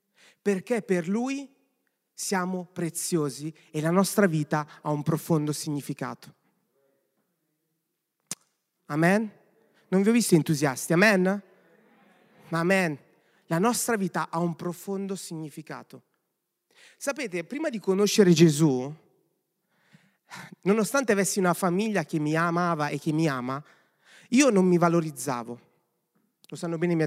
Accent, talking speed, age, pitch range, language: native, 120 wpm, 30-49, 150-195 Hz, Italian